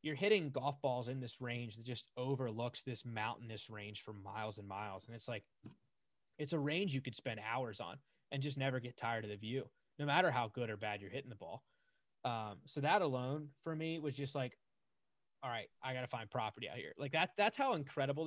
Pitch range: 125-150 Hz